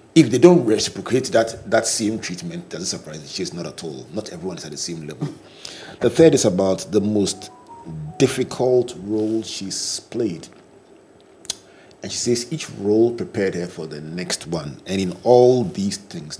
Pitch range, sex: 90-120 Hz, male